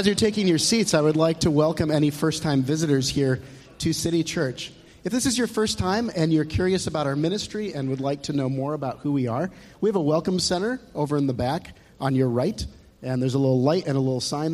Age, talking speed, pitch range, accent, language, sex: 40-59, 250 wpm, 130-170 Hz, American, English, male